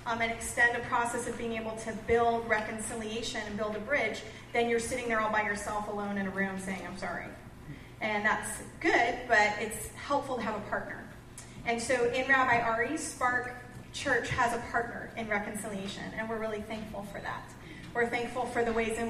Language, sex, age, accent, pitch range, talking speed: English, female, 30-49, American, 220-260 Hz, 200 wpm